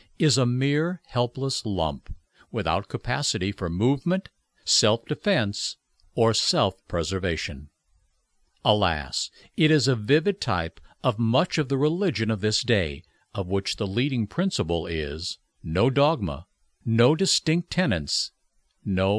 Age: 60-79